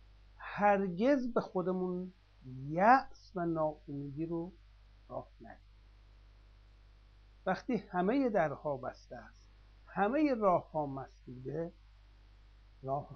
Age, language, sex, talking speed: 60-79, Persian, male, 80 wpm